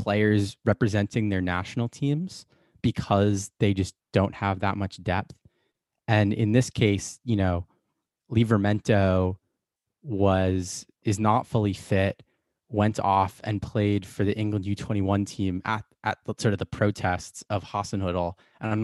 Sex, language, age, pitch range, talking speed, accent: male, English, 20-39, 95-110 Hz, 145 wpm, American